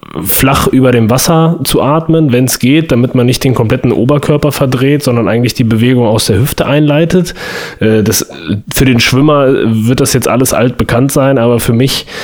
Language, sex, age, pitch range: German, male, 30-49, 110-135 Hz